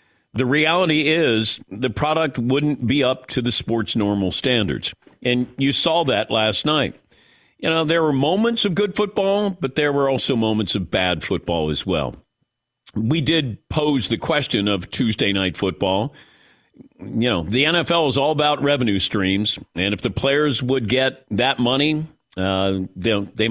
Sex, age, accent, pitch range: male, 50-69, American, 110-150 Hz